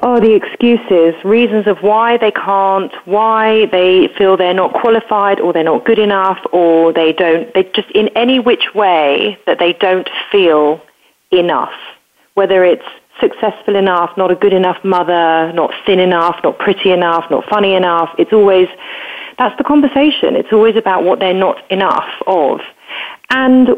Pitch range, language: 185-240 Hz, English